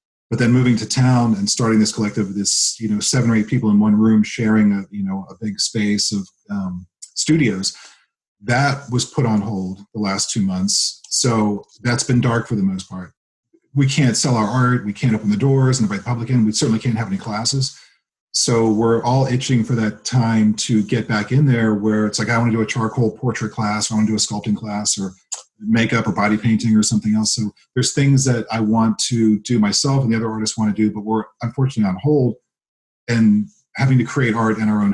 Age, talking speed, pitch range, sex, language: 40-59, 230 wpm, 105-120 Hz, male, English